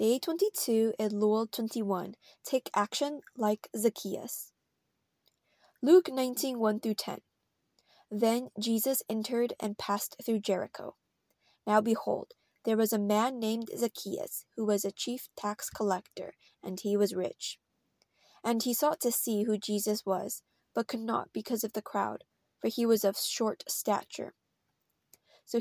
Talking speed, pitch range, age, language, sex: 135 wpm, 200-230 Hz, 20-39, English, female